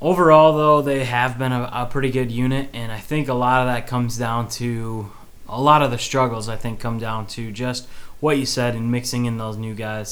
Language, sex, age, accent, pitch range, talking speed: English, male, 20-39, American, 110-130 Hz, 235 wpm